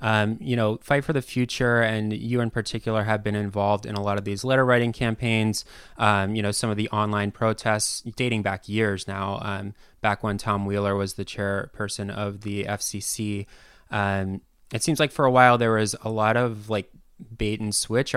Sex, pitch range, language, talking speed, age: male, 100-115 Hz, English, 200 wpm, 20-39